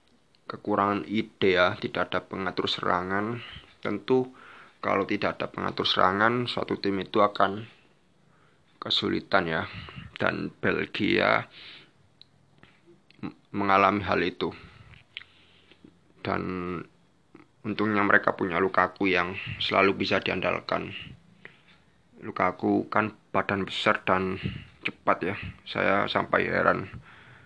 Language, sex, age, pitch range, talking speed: Indonesian, male, 20-39, 95-120 Hz, 100 wpm